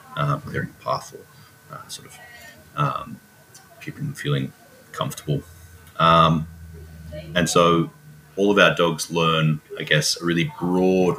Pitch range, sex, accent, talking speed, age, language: 75-90 Hz, male, Australian, 135 wpm, 30-49, English